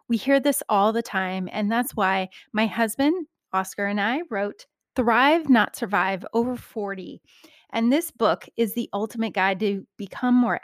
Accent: American